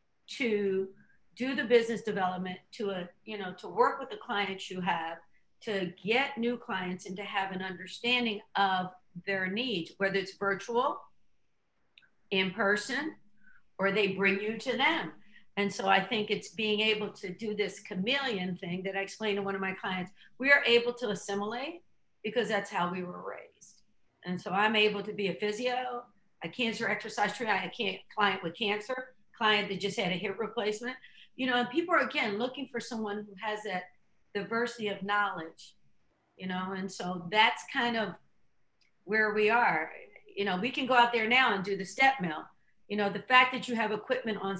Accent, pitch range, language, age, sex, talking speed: American, 195-235 Hz, English, 50-69, female, 190 wpm